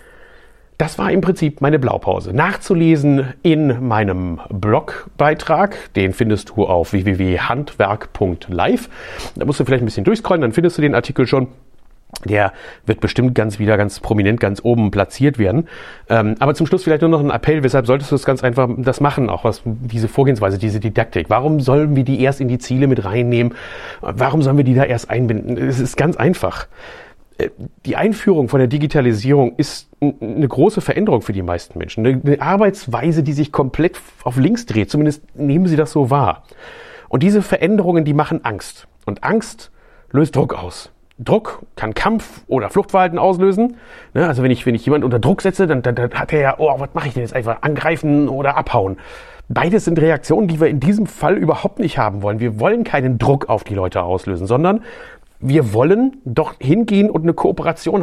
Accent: German